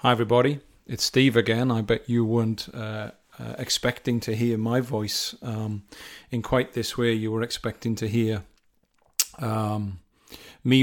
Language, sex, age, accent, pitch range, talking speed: English, male, 40-59, British, 110-120 Hz, 155 wpm